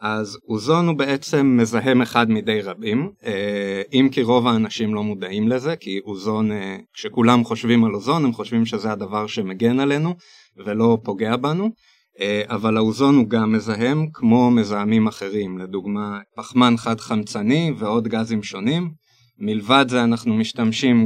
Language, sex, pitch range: Hebrew, male, 105-140 Hz